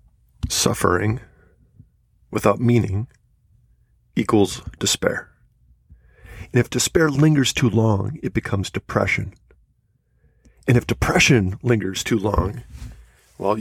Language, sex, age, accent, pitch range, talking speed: English, male, 40-59, American, 95-130 Hz, 95 wpm